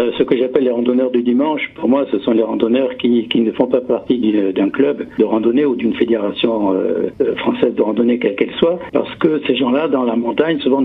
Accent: French